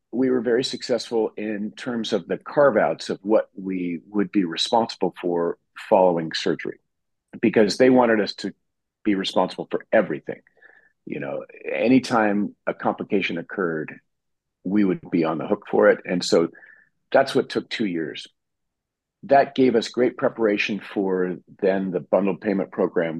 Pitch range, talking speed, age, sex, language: 90-125 Hz, 155 wpm, 50-69, male, English